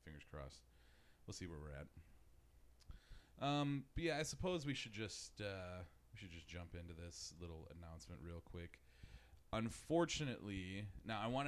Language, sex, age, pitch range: English, male, 30-49, 85-115 Hz